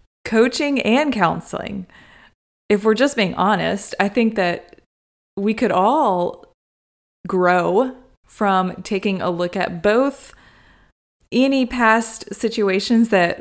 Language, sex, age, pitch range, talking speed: English, female, 20-39, 175-220 Hz, 110 wpm